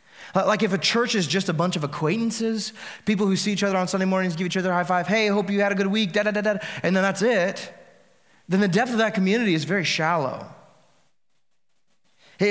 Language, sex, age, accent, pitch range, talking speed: English, male, 20-39, American, 155-200 Hz, 220 wpm